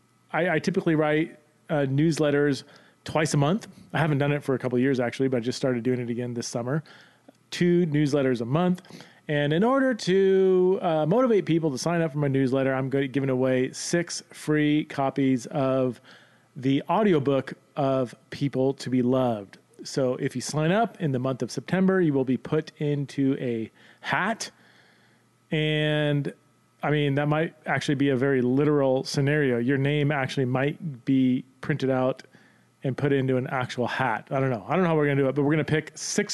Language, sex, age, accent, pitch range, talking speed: English, male, 30-49, American, 130-155 Hz, 200 wpm